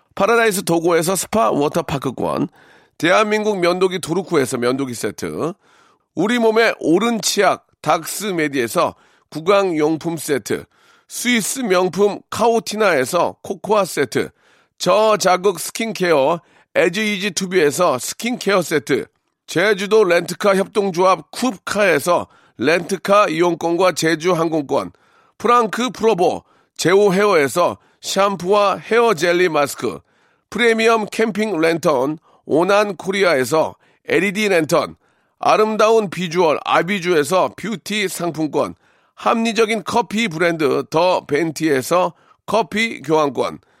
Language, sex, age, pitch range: Korean, male, 40-59, 170-220 Hz